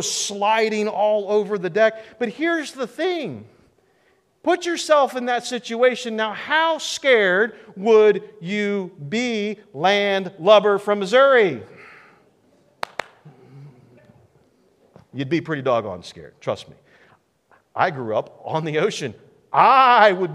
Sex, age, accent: male, 40-59, American